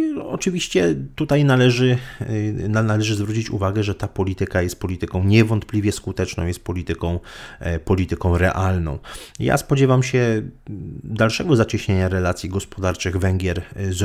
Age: 30-49